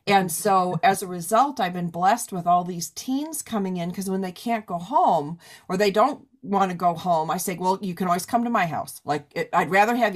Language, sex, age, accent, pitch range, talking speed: English, female, 40-59, American, 175-220 Hz, 250 wpm